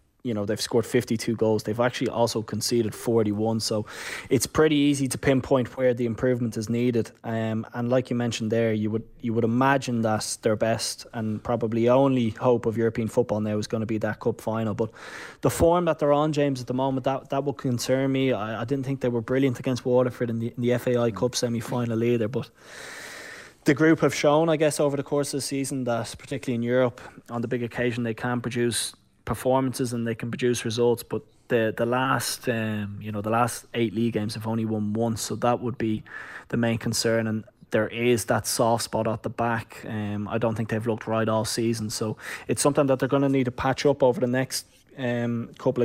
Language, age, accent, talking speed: English, 20-39, Irish, 220 wpm